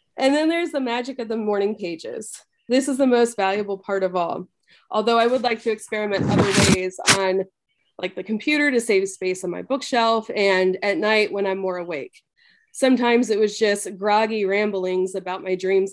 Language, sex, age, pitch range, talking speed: English, female, 20-39, 190-230 Hz, 190 wpm